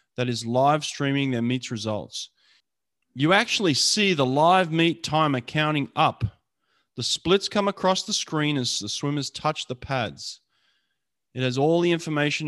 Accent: Australian